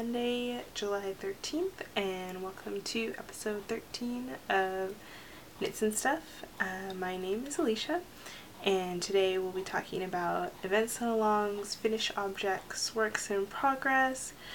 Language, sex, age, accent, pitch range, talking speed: English, female, 10-29, American, 190-235 Hz, 130 wpm